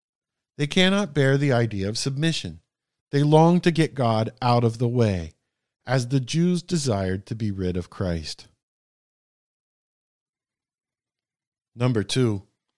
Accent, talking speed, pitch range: American, 125 wpm, 110-155 Hz